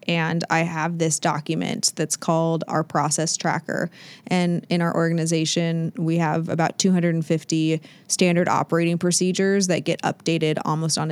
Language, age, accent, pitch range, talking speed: English, 20-39, American, 160-180 Hz, 140 wpm